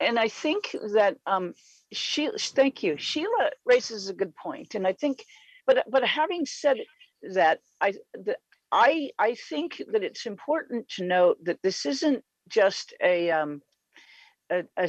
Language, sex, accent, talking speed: English, female, American, 155 wpm